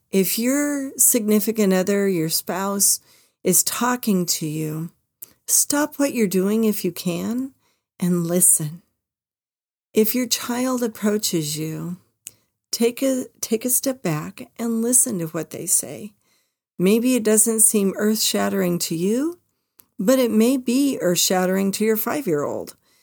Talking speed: 130 wpm